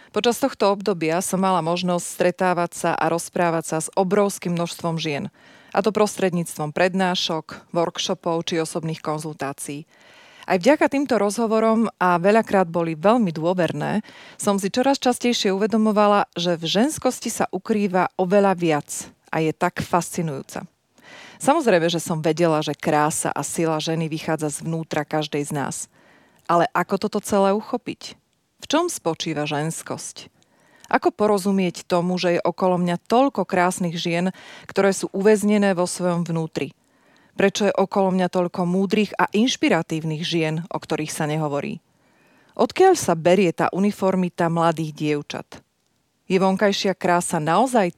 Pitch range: 160-205 Hz